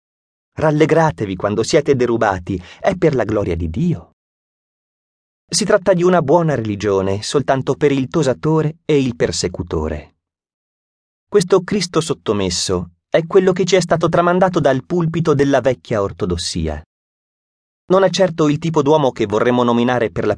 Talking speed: 145 wpm